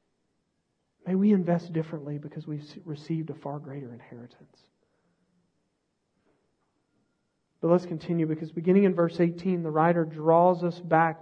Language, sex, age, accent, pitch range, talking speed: English, male, 40-59, American, 170-245 Hz, 130 wpm